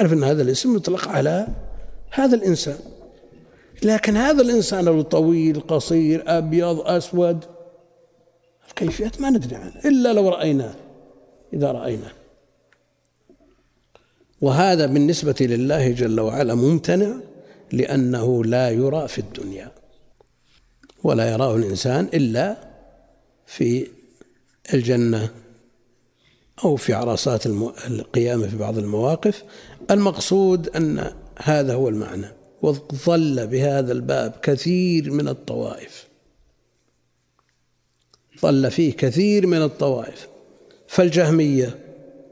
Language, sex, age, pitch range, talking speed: Arabic, male, 60-79, 125-180 Hz, 90 wpm